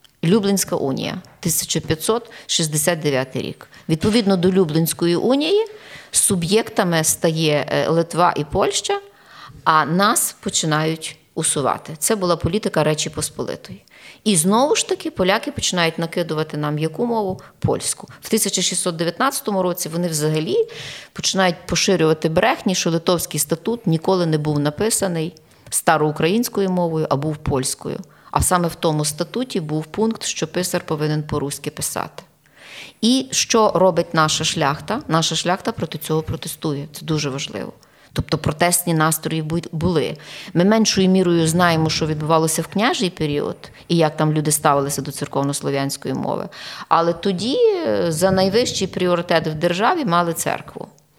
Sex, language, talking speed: female, Ukrainian, 125 wpm